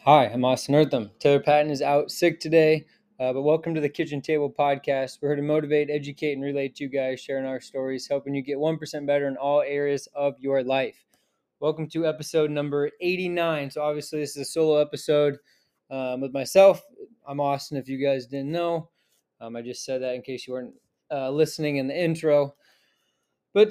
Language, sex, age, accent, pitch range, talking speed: English, male, 20-39, American, 140-160 Hz, 200 wpm